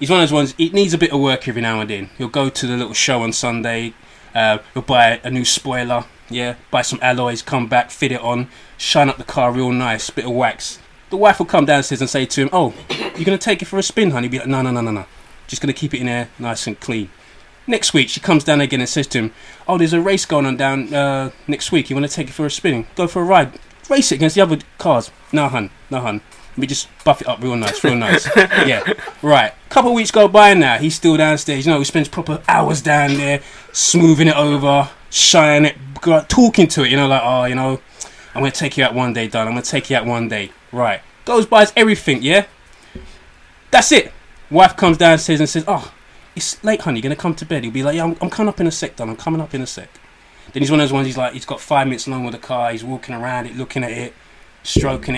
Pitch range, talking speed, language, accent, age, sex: 120-160 Hz, 270 wpm, English, British, 20-39, male